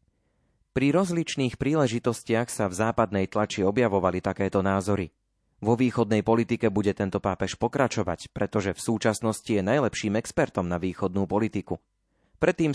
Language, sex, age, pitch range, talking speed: Slovak, male, 30-49, 100-125 Hz, 125 wpm